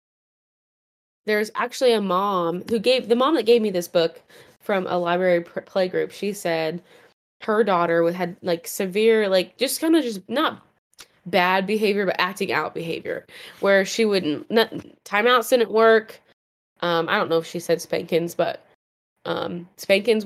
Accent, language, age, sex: American, English, 20-39, female